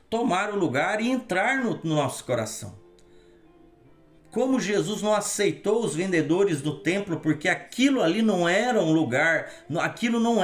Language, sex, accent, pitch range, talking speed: Portuguese, male, Brazilian, 160-225 Hz, 155 wpm